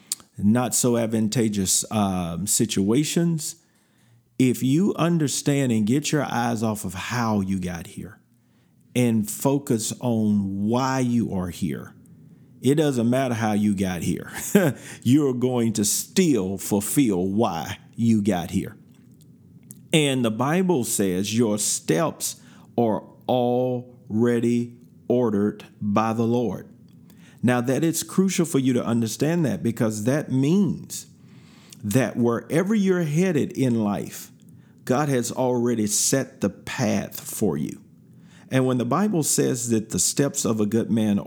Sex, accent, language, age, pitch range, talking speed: male, American, English, 50-69, 110-145 Hz, 130 wpm